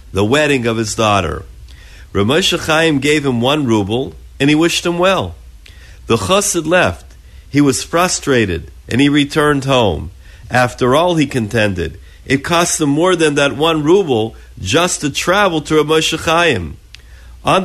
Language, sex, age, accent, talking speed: English, male, 50-69, American, 145 wpm